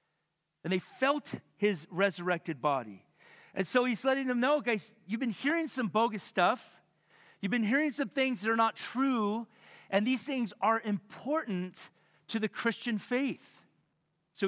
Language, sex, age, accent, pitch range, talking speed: English, male, 40-59, American, 160-220 Hz, 160 wpm